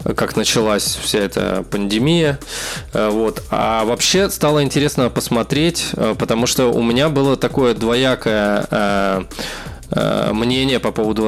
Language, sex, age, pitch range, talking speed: Russian, male, 20-39, 105-130 Hz, 110 wpm